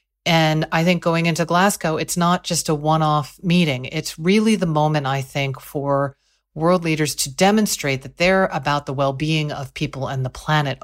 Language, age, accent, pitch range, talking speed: English, 50-69, American, 140-170 Hz, 185 wpm